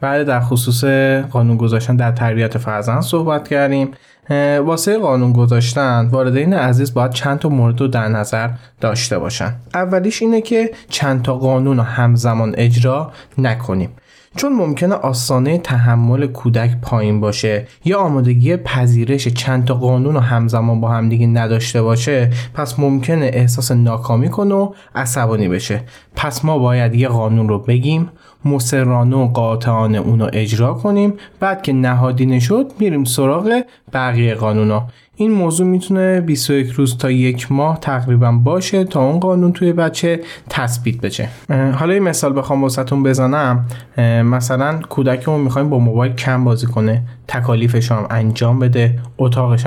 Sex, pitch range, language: male, 115-145 Hz, Persian